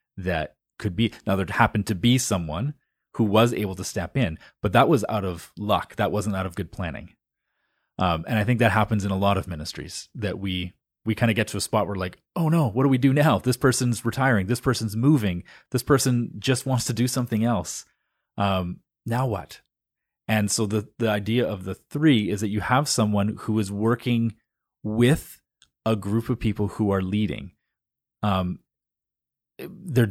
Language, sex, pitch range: English, male, 95-120 Hz